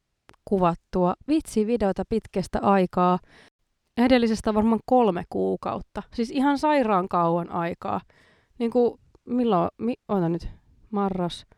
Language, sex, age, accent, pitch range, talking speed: Finnish, female, 20-39, native, 175-225 Hz, 110 wpm